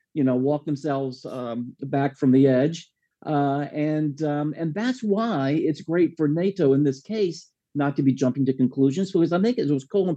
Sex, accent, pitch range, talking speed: male, American, 130-160 Hz, 200 wpm